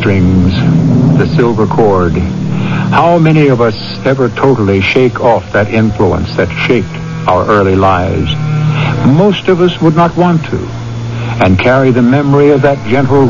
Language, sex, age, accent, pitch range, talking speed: English, male, 70-89, American, 100-130 Hz, 150 wpm